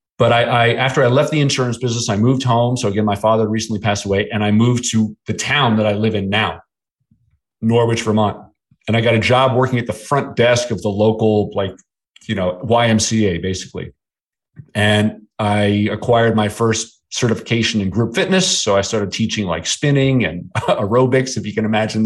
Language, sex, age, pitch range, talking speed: English, male, 40-59, 105-125 Hz, 195 wpm